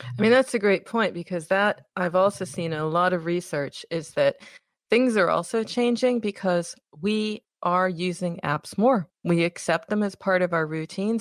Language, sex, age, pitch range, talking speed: English, female, 40-59, 170-215 Hz, 185 wpm